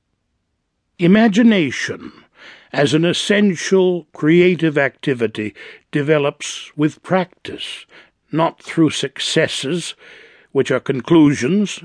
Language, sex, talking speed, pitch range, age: English, male, 75 wpm, 130-165 Hz, 60-79